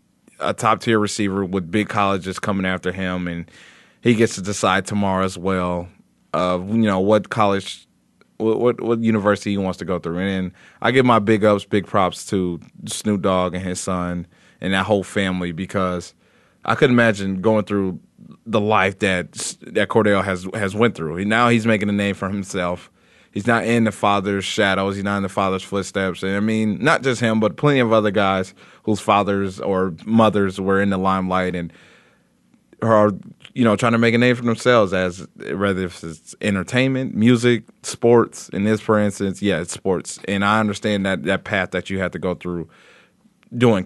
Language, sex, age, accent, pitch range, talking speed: English, male, 20-39, American, 95-110 Hz, 190 wpm